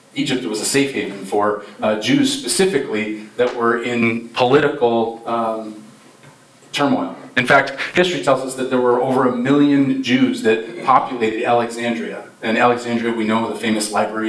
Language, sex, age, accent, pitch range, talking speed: English, male, 30-49, American, 115-155 Hz, 155 wpm